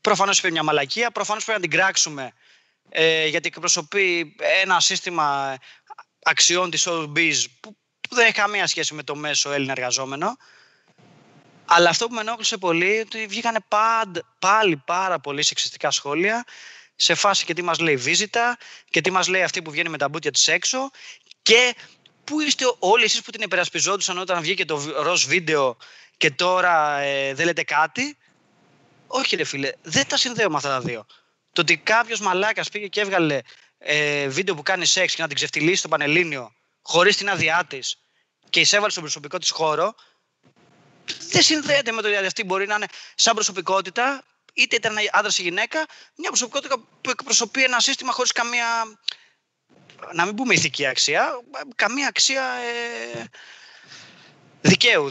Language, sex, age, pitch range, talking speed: Greek, male, 20-39, 165-230 Hz, 165 wpm